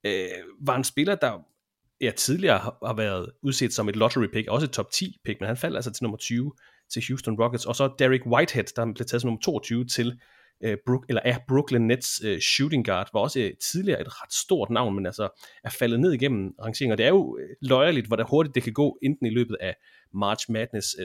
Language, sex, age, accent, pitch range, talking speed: Danish, male, 30-49, native, 110-130 Hz, 215 wpm